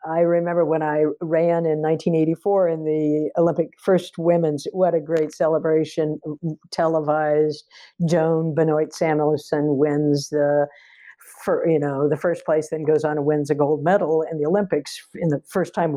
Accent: American